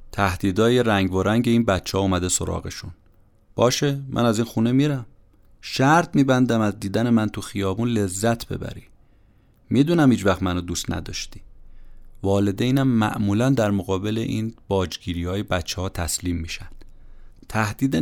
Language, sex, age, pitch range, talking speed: Persian, male, 30-49, 95-125 Hz, 140 wpm